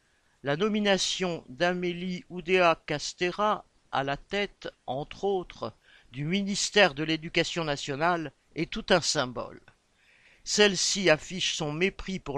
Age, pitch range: 50-69, 155-195 Hz